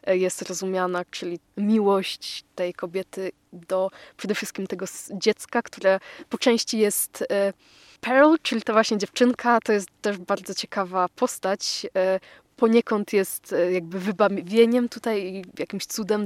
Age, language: 20-39, Polish